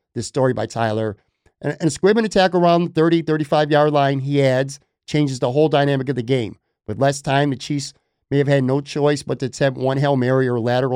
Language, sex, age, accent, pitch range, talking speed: English, male, 50-69, American, 130-155 Hz, 230 wpm